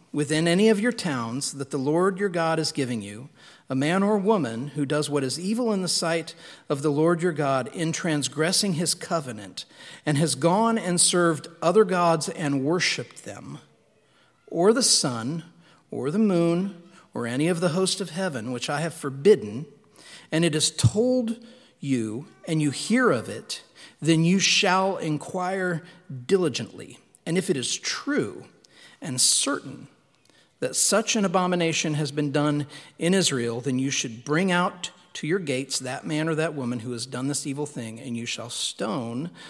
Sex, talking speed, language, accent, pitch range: male, 175 wpm, English, American, 140-180 Hz